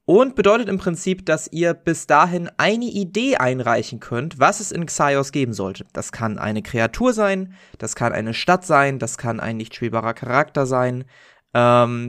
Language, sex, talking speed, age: German, male, 180 wpm, 20-39